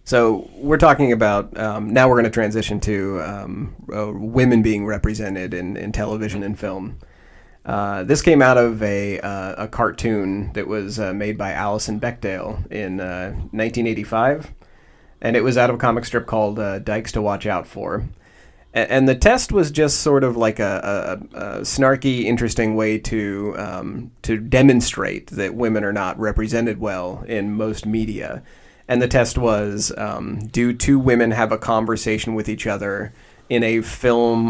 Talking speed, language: 175 wpm, English